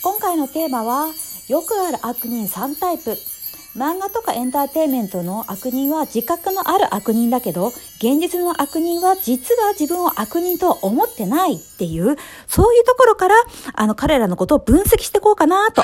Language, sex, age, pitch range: Japanese, female, 50-69, 220-345 Hz